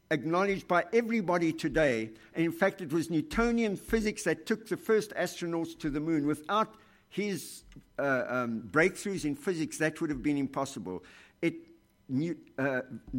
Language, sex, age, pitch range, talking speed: English, male, 60-79, 135-185 Hz, 155 wpm